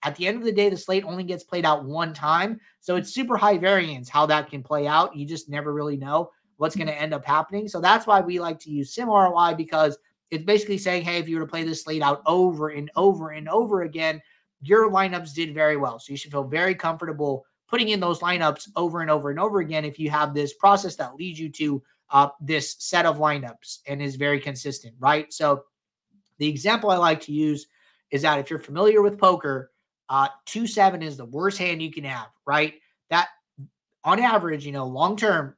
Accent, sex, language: American, male, English